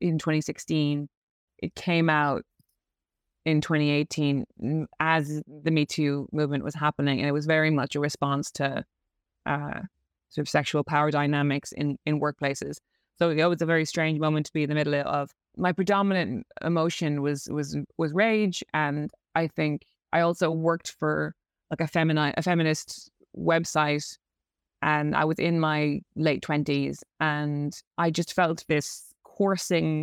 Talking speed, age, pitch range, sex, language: 155 wpm, 20-39, 145-165 Hz, female, English